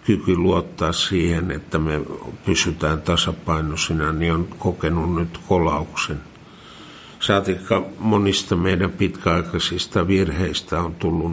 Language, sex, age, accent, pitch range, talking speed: Finnish, male, 60-79, native, 85-100 Hz, 100 wpm